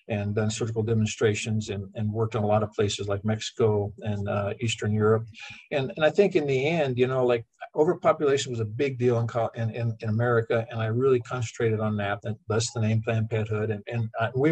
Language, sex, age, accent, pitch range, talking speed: English, male, 50-69, American, 110-125 Hz, 215 wpm